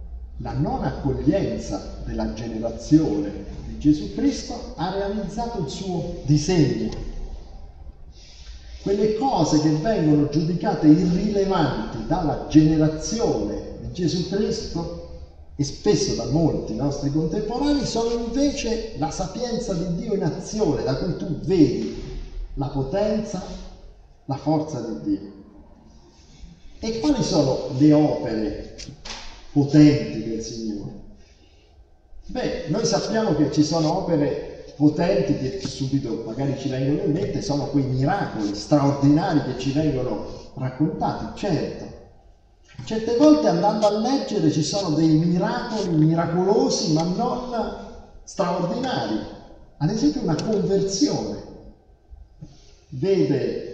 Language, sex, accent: Italian, male, native